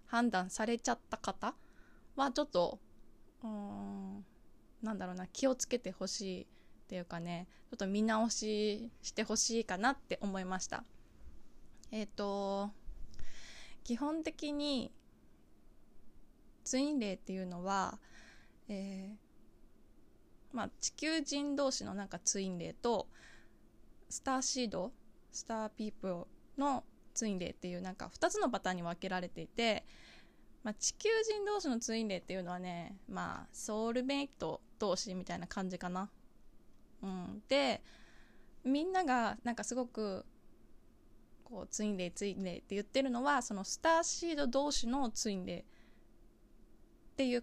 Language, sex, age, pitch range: Japanese, female, 20-39, 190-255 Hz